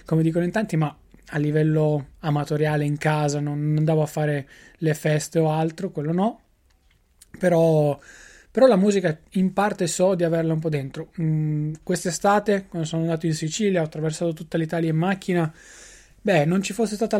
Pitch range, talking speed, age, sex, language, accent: 155-185 Hz, 175 wpm, 20-39, male, Italian, native